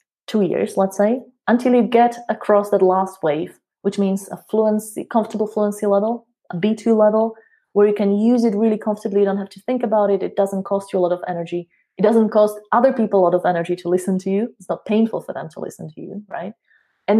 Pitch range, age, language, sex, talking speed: 185-225 Hz, 20-39, English, female, 235 wpm